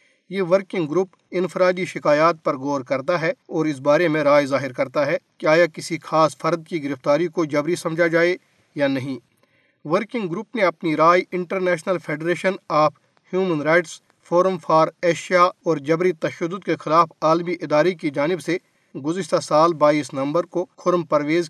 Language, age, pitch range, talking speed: Urdu, 50-69, 155-185 Hz, 165 wpm